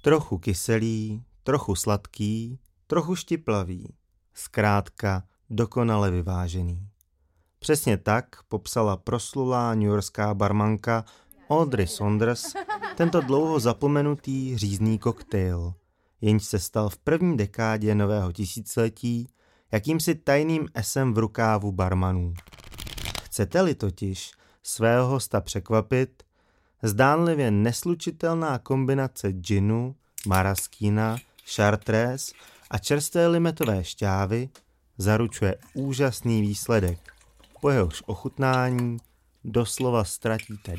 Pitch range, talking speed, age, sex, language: 100-130 Hz, 85 wpm, 30-49, male, Czech